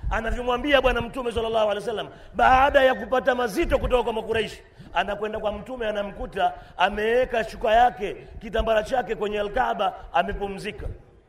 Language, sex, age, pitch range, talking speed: Swahili, male, 40-59, 205-270 Hz, 135 wpm